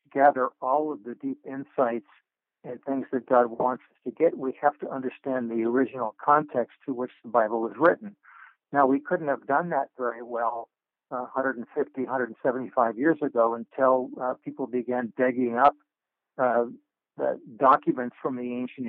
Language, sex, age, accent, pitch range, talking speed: English, male, 60-79, American, 120-135 Hz, 165 wpm